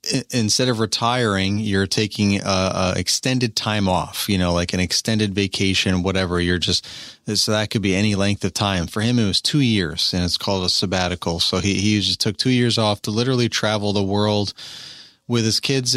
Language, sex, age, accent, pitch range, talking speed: English, male, 30-49, American, 95-115 Hz, 205 wpm